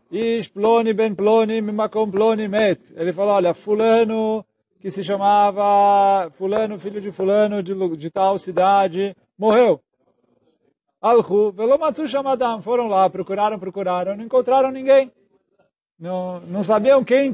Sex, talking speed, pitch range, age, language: male, 105 wpm, 175-230 Hz, 40-59, Portuguese